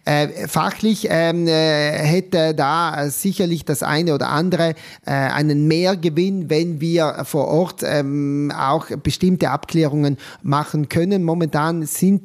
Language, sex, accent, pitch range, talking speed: German, male, German, 145-170 Hz, 105 wpm